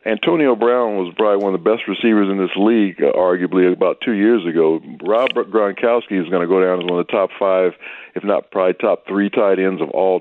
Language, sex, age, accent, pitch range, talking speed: English, male, 50-69, American, 95-115 Hz, 230 wpm